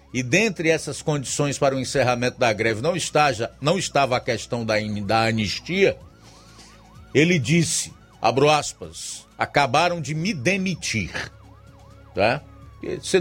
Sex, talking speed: male, 120 wpm